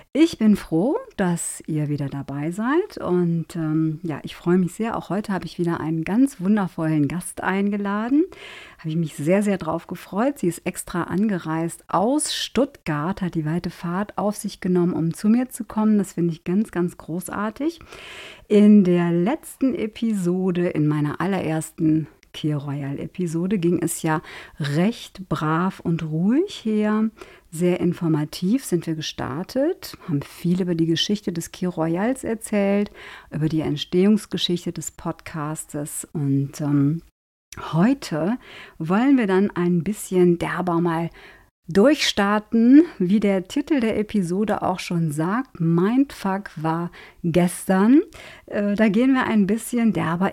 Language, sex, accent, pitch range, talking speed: German, female, German, 165-220 Hz, 145 wpm